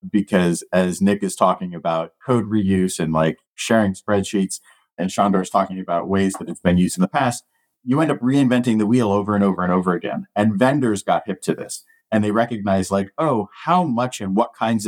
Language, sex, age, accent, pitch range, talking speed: English, male, 40-59, American, 95-125 Hz, 215 wpm